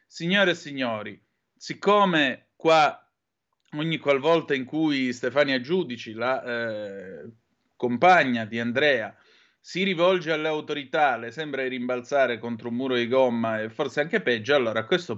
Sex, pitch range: male, 115-160 Hz